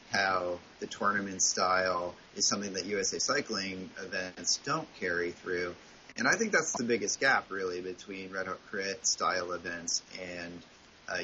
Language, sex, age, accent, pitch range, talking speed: English, male, 30-49, American, 95-115 Hz, 150 wpm